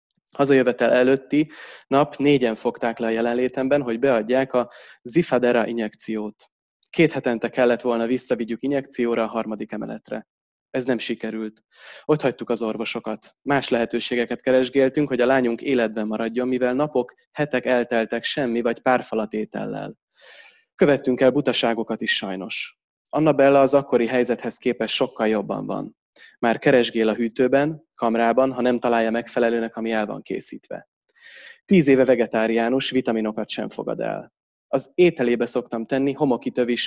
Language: Hungarian